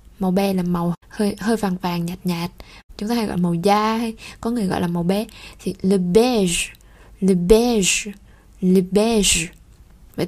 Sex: female